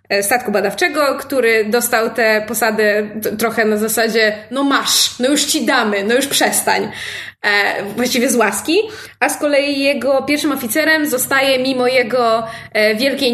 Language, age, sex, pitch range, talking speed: Polish, 20-39, female, 215-265 Hz, 140 wpm